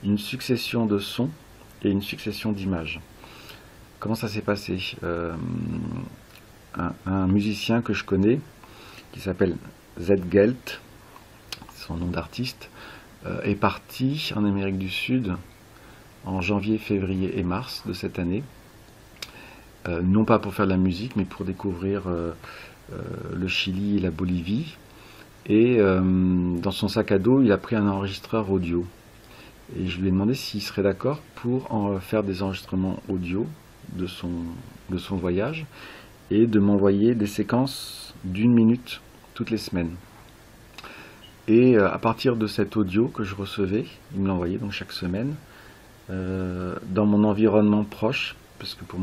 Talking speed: 150 wpm